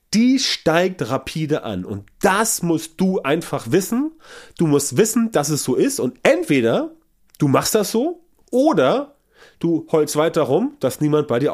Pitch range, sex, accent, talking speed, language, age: 135-195 Hz, male, German, 165 wpm, German, 30-49